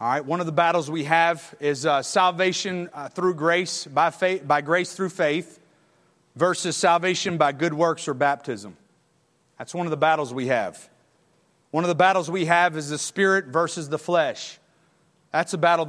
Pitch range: 150-180 Hz